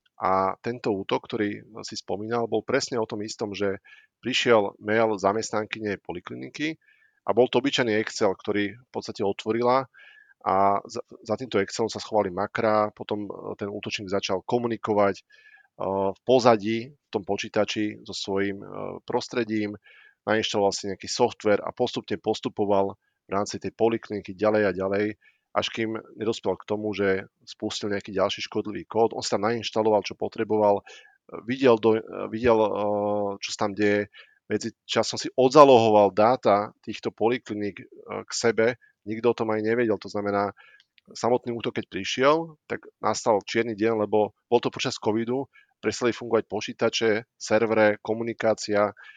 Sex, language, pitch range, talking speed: male, Slovak, 100-115 Hz, 145 wpm